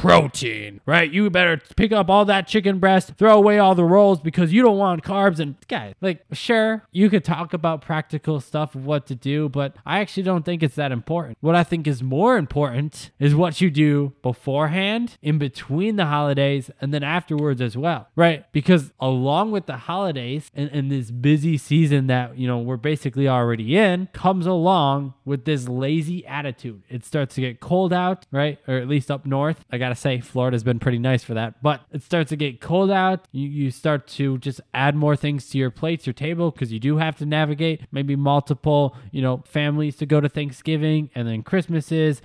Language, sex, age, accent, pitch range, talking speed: English, male, 20-39, American, 140-175 Hz, 205 wpm